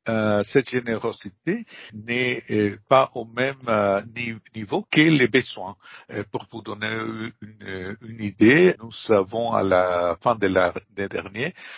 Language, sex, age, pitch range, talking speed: French, male, 60-79, 95-120 Hz, 115 wpm